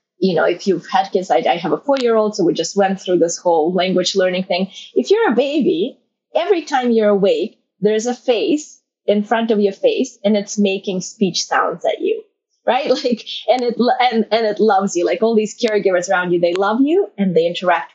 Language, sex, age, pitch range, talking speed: English, female, 20-39, 185-240 Hz, 210 wpm